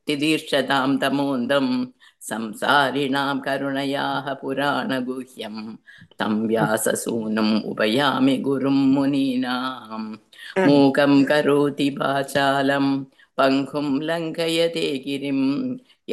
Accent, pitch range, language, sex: native, 135-145 Hz, Tamil, female